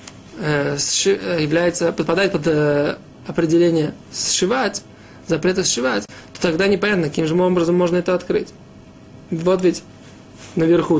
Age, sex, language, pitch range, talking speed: 20-39, male, Russian, 160-195 Hz, 110 wpm